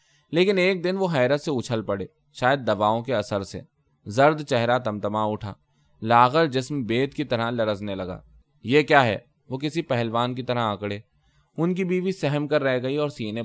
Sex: male